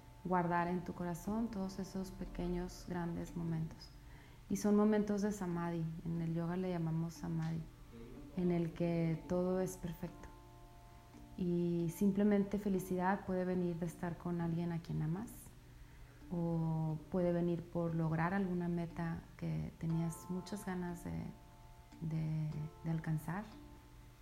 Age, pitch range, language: 30-49, 165-195 Hz, Spanish